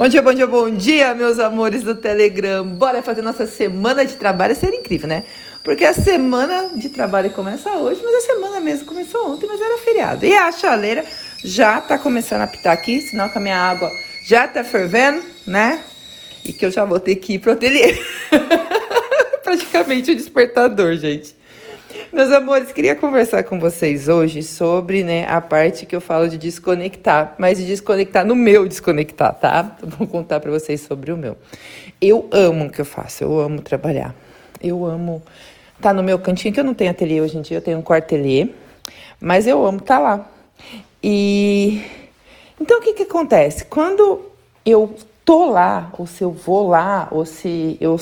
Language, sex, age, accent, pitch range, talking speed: Portuguese, female, 40-59, Brazilian, 175-270 Hz, 185 wpm